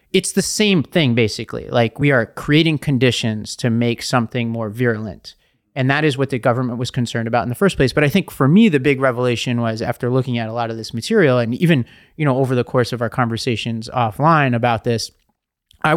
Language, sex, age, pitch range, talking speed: English, male, 30-49, 115-145 Hz, 220 wpm